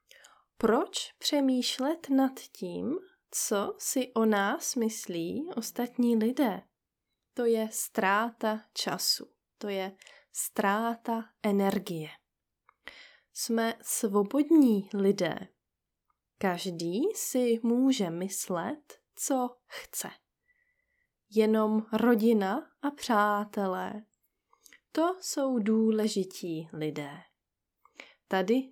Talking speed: 75 wpm